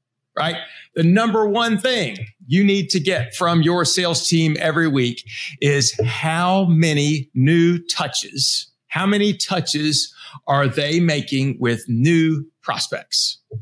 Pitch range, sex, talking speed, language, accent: 130-170 Hz, male, 130 wpm, English, American